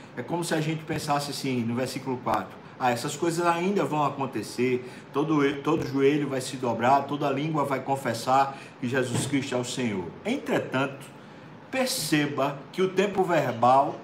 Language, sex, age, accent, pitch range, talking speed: Portuguese, male, 60-79, Brazilian, 130-165 Hz, 165 wpm